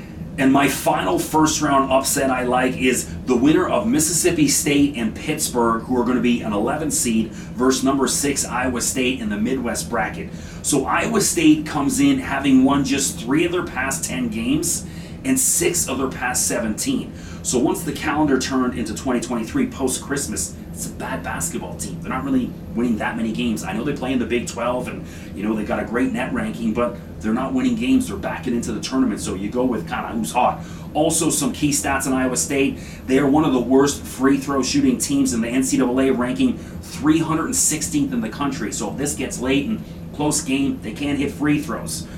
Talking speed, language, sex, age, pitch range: 205 wpm, English, male, 30-49, 120-155 Hz